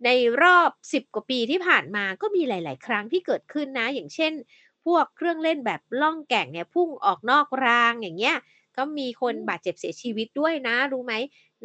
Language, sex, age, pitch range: Thai, female, 30-49, 225-315 Hz